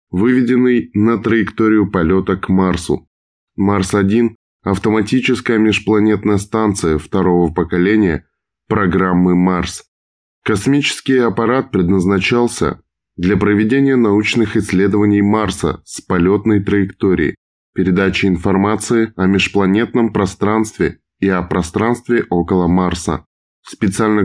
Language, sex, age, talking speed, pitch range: Russian, male, 20-39, 90 wpm, 95-110 Hz